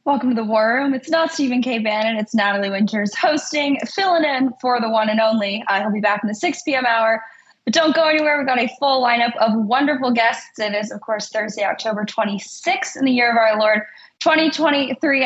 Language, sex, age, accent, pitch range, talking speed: English, female, 10-29, American, 205-250 Hz, 215 wpm